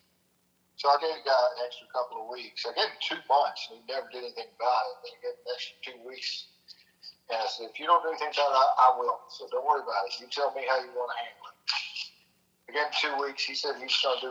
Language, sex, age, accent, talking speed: English, male, 50-69, American, 265 wpm